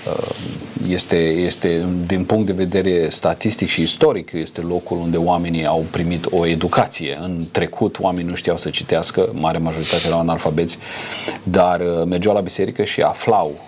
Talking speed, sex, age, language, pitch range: 150 wpm, male, 40-59, Romanian, 85-100 Hz